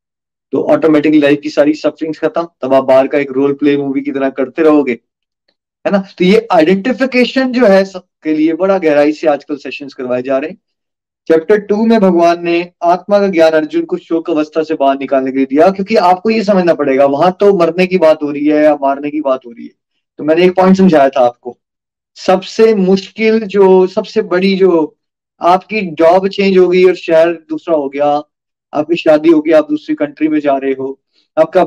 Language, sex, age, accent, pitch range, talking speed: Hindi, male, 30-49, native, 155-220 Hz, 170 wpm